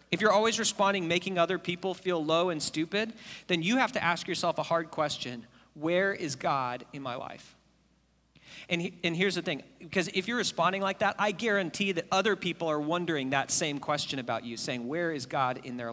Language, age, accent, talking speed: English, 40-59, American, 210 wpm